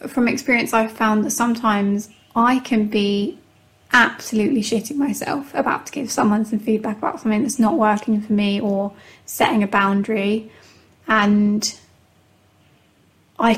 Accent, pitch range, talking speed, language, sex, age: British, 210-235 Hz, 135 wpm, English, female, 20-39